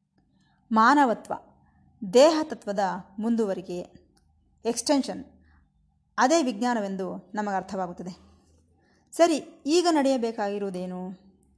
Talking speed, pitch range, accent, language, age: 60 wpm, 190-270 Hz, native, Kannada, 20-39